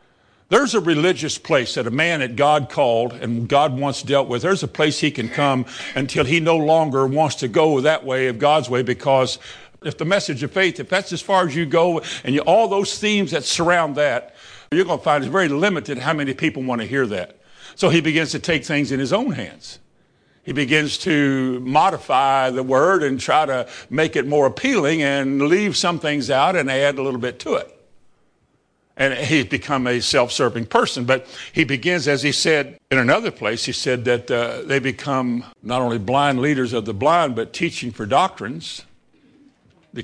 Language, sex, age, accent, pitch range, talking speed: English, male, 50-69, American, 130-165 Hz, 200 wpm